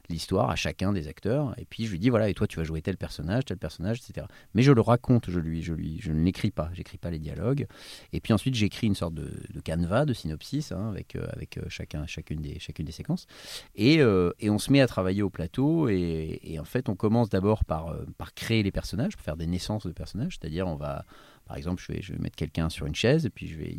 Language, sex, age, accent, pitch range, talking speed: French, male, 30-49, French, 80-115 Hz, 265 wpm